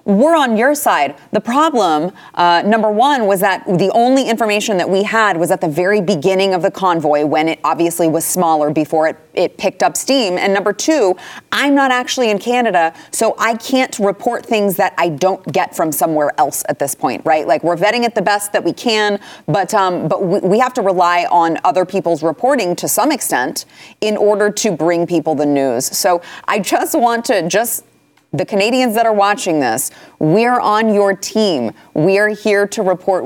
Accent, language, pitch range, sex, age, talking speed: American, English, 165-215 Hz, female, 30-49, 200 wpm